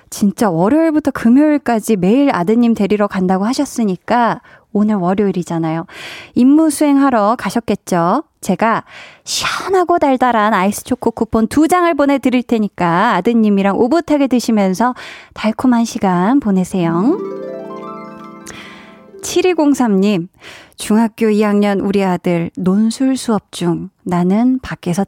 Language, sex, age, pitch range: Korean, female, 20-39, 190-255 Hz